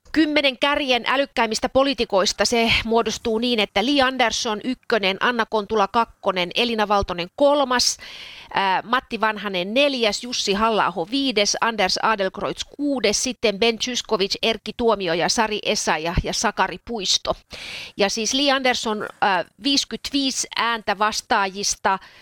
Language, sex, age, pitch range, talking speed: Finnish, female, 30-49, 210-265 Hz, 125 wpm